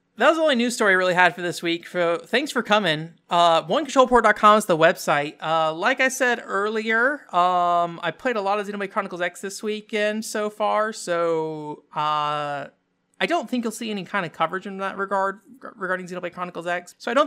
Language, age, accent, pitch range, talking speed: English, 30-49, American, 145-190 Hz, 210 wpm